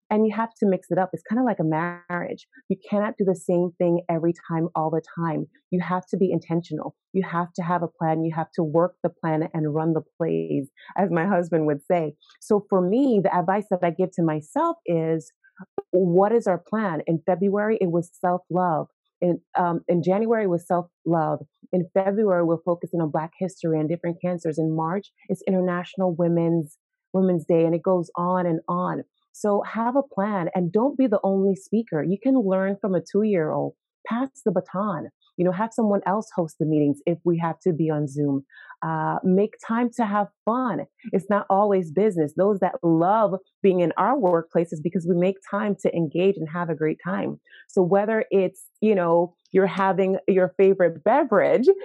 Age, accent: 30-49, American